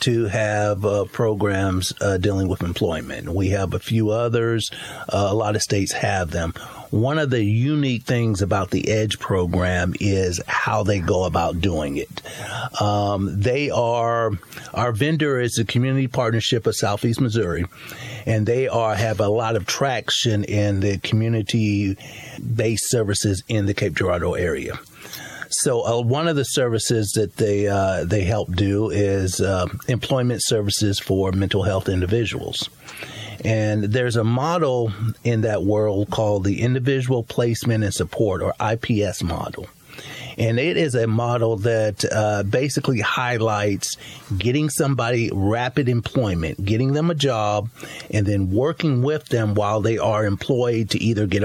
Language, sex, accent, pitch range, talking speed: English, male, American, 100-125 Hz, 150 wpm